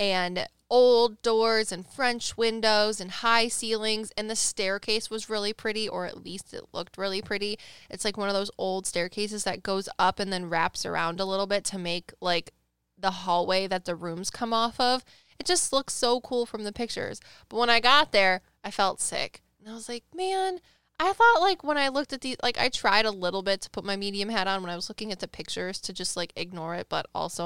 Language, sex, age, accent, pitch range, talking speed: English, female, 20-39, American, 180-240 Hz, 230 wpm